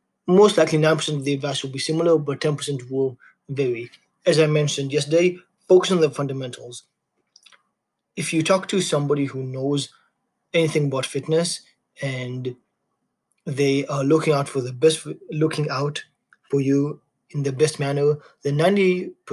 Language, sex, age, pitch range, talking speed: English, male, 30-49, 140-165 Hz, 150 wpm